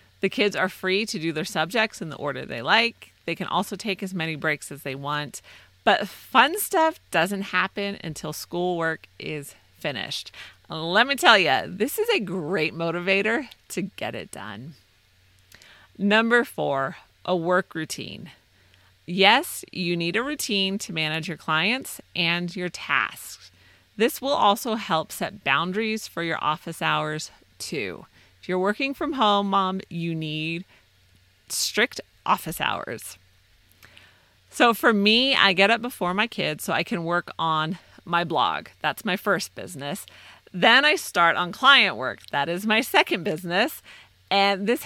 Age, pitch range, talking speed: 30-49, 145-200 Hz, 155 wpm